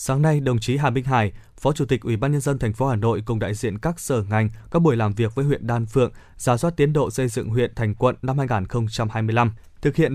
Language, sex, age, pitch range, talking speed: Vietnamese, male, 20-39, 115-145 Hz, 290 wpm